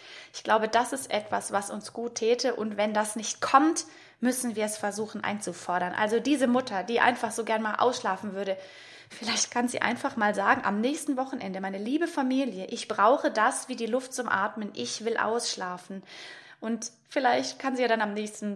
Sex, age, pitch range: female, 20-39, 205-255 Hz